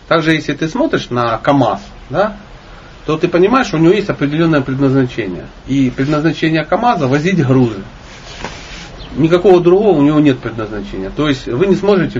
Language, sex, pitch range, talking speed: Russian, male, 125-170 Hz, 160 wpm